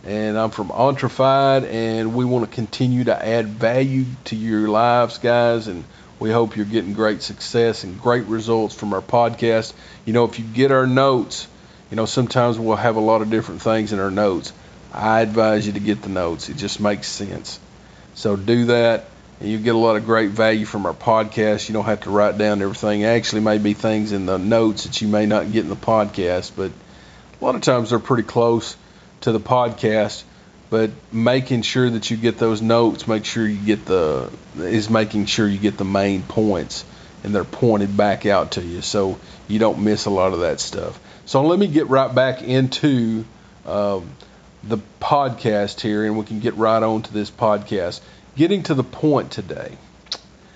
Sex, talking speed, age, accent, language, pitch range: male, 200 wpm, 40-59, American, English, 105-120 Hz